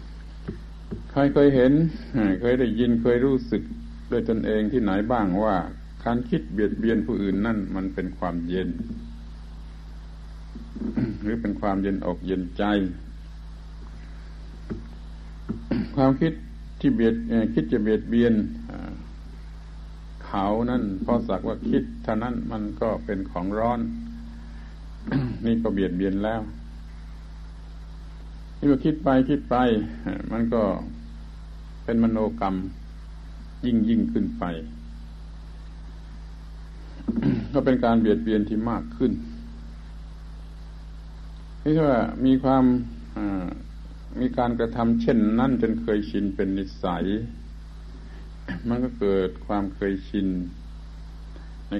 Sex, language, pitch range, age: male, Thai, 80-115 Hz, 70-89